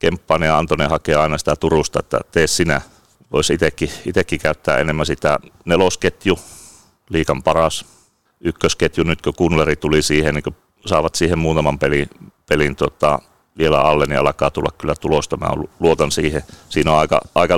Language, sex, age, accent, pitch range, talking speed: Finnish, male, 30-49, native, 75-80 Hz, 165 wpm